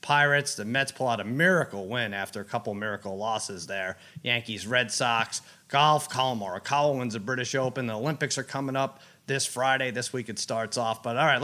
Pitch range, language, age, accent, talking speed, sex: 130-180 Hz, English, 30-49, American, 205 wpm, male